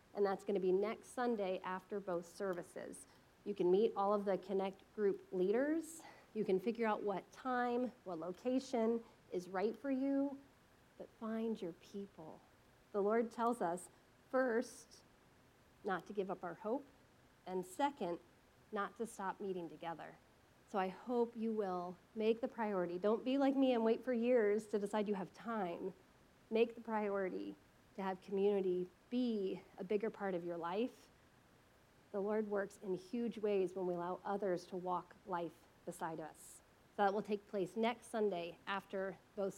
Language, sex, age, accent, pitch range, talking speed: English, female, 40-59, American, 185-230 Hz, 165 wpm